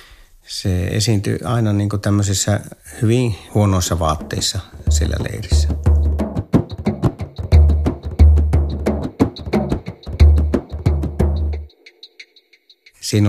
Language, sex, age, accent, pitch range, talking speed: Finnish, male, 50-69, native, 90-105 Hz, 45 wpm